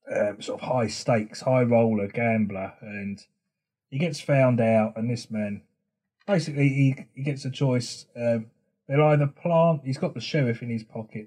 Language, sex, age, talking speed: English, male, 30-49, 175 wpm